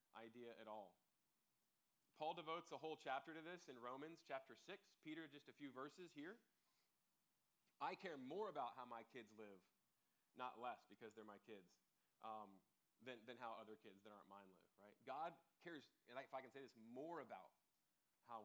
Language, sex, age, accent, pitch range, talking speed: English, male, 30-49, American, 105-140 Hz, 180 wpm